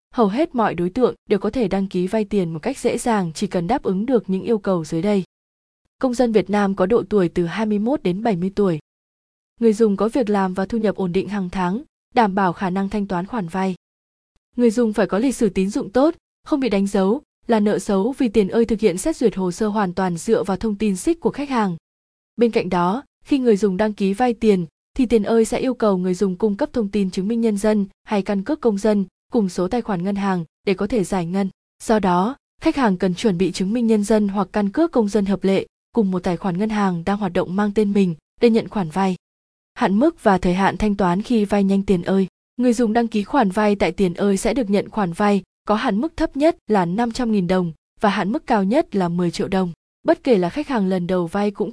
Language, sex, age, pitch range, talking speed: Vietnamese, female, 20-39, 185-230 Hz, 255 wpm